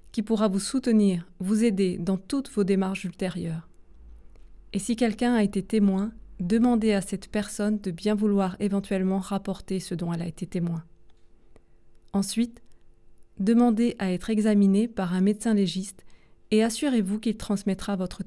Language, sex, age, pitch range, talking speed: French, female, 20-39, 175-215 Hz, 150 wpm